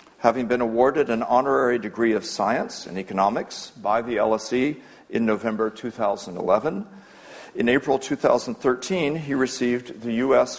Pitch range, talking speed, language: 110-135 Hz, 130 wpm, English